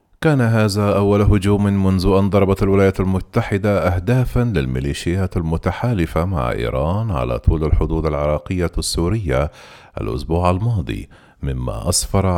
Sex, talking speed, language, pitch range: male, 110 wpm, Arabic, 75-100 Hz